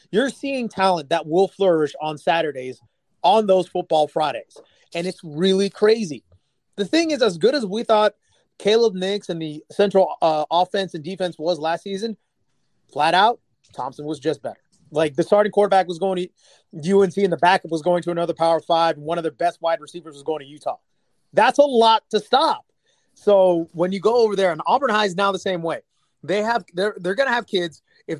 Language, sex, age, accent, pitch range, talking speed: English, male, 30-49, American, 160-205 Hz, 210 wpm